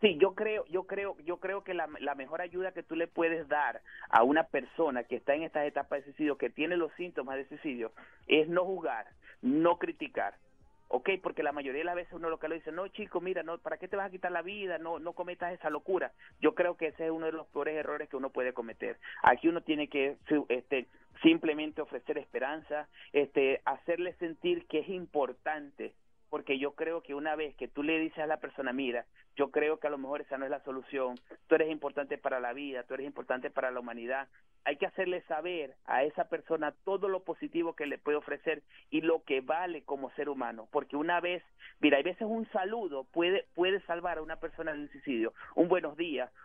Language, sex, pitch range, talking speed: Spanish, male, 145-175 Hz, 220 wpm